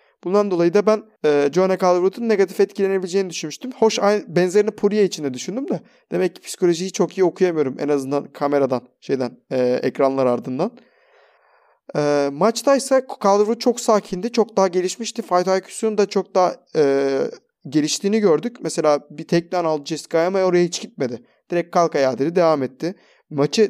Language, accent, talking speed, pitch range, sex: Turkish, native, 155 wpm, 160-205 Hz, male